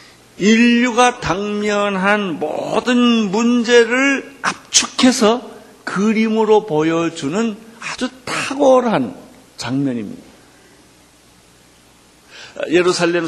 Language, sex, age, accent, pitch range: Korean, male, 50-69, native, 145-220 Hz